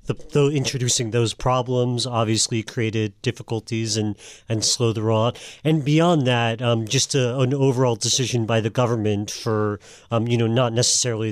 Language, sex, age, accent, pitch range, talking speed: English, male, 40-59, American, 105-130 Hz, 165 wpm